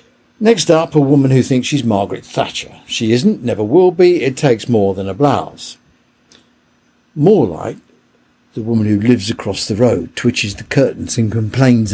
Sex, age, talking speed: male, 60-79, 170 wpm